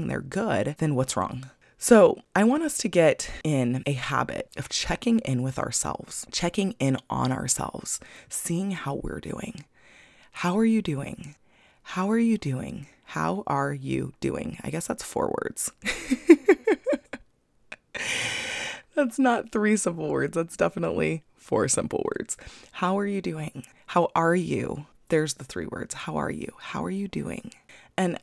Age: 20-39